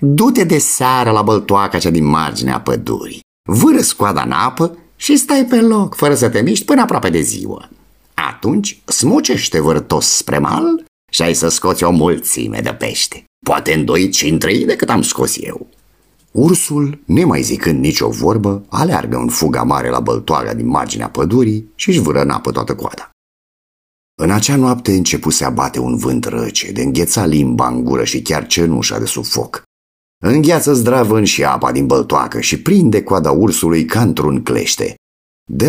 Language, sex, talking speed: Romanian, male, 170 wpm